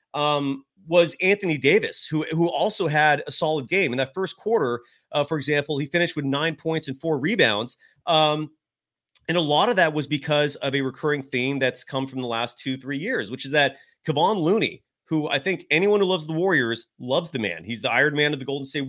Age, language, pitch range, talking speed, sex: 30-49, English, 130-160 Hz, 220 wpm, male